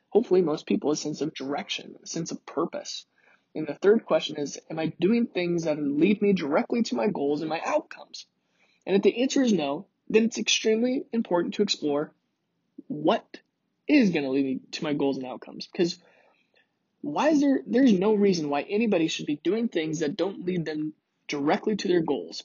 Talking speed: 195 wpm